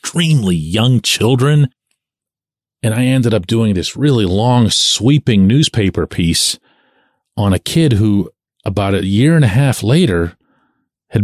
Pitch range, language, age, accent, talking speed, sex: 105-145 Hz, English, 40-59, American, 140 wpm, male